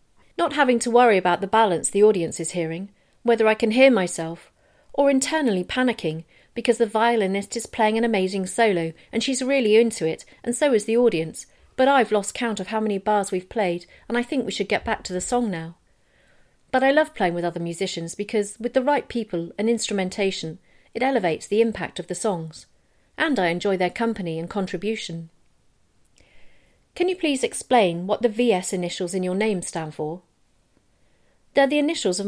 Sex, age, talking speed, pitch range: female, 40-59, 190 wpm, 180-240 Hz